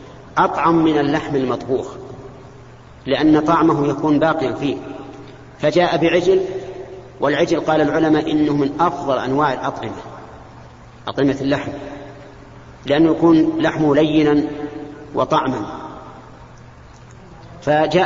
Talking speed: 90 wpm